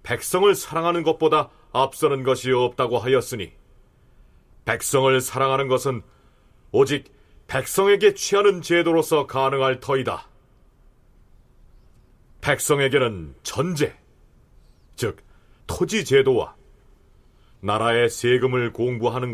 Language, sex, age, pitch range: Korean, male, 40-59, 120-170 Hz